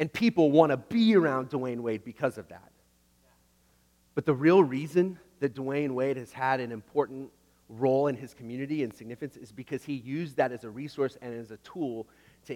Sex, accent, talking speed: male, American, 195 wpm